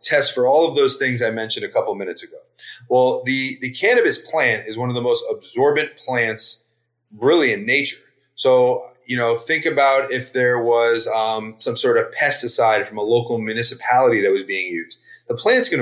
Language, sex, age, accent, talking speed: English, male, 30-49, American, 195 wpm